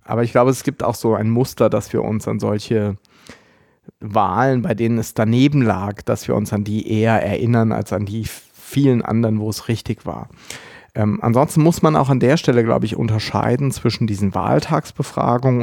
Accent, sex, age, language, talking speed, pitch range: German, male, 30-49, German, 190 wpm, 110-135 Hz